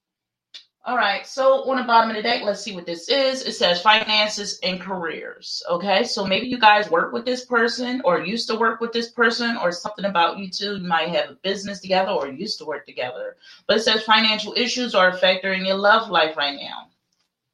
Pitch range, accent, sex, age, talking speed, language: 170-235 Hz, American, female, 30-49, 220 wpm, English